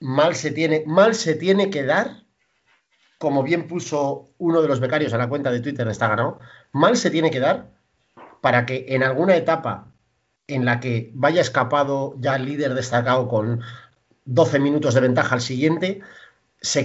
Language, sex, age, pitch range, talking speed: Spanish, male, 40-59, 125-170 Hz, 175 wpm